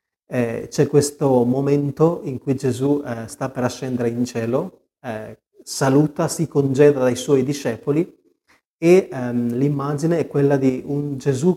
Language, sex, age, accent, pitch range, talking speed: Italian, male, 30-49, native, 125-155 Hz, 145 wpm